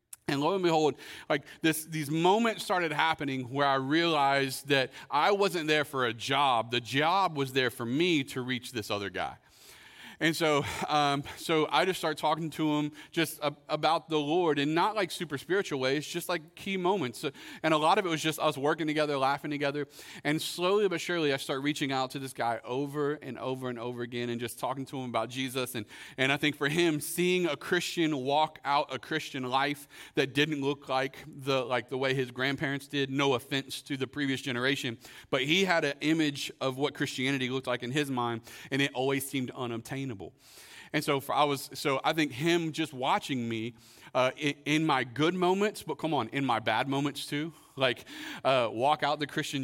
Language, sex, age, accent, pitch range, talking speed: English, male, 40-59, American, 130-155 Hz, 210 wpm